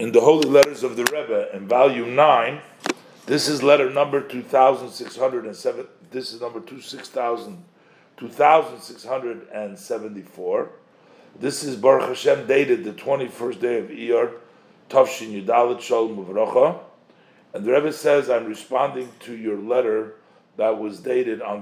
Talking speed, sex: 135 wpm, male